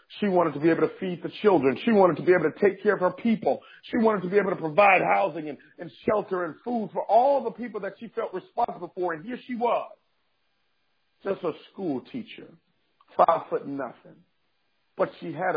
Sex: male